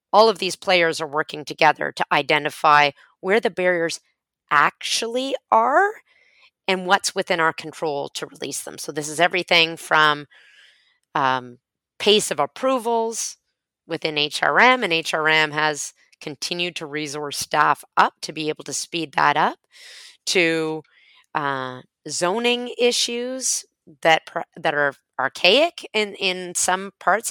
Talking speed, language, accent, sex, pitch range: 135 wpm, English, American, female, 155-205 Hz